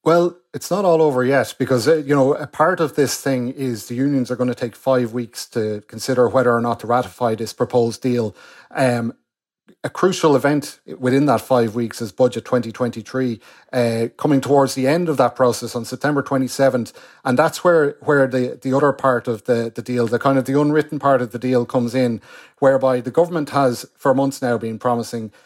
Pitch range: 125-140 Hz